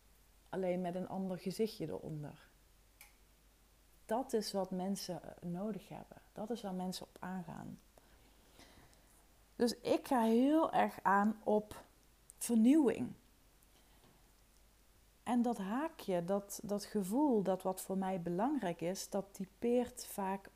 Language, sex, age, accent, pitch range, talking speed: Dutch, female, 40-59, Dutch, 165-210 Hz, 120 wpm